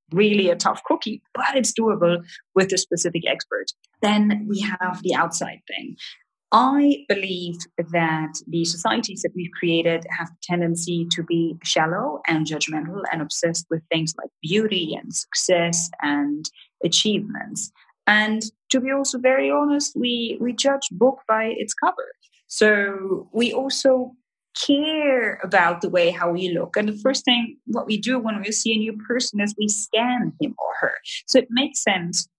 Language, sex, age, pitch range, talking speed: English, female, 30-49, 170-220 Hz, 165 wpm